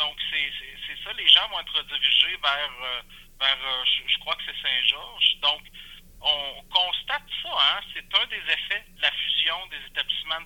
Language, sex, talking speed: French, male, 140 wpm